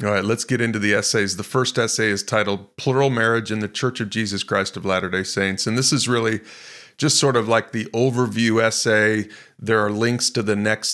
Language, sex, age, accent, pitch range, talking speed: English, male, 30-49, American, 100-120 Hz, 220 wpm